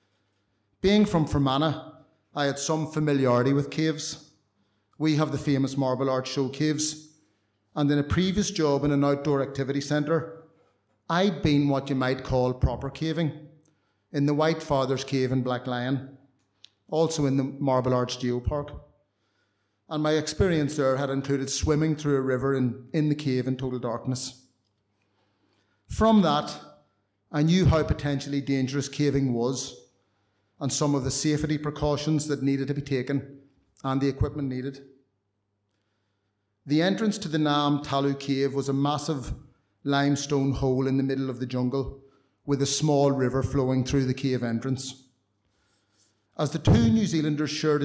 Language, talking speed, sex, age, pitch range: English, 155 wpm, male, 30-49, 130-150 Hz